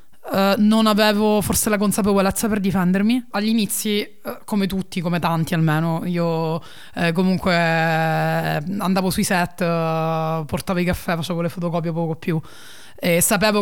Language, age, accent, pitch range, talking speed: Italian, 20-39, native, 170-200 Hz, 140 wpm